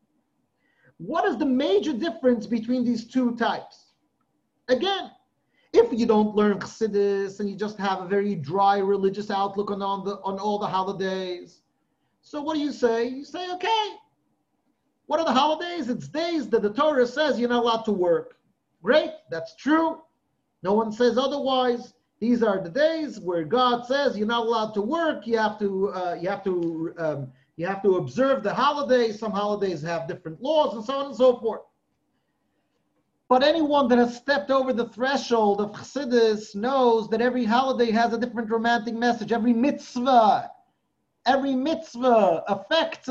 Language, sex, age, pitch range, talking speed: English, male, 40-59, 210-280 Hz, 170 wpm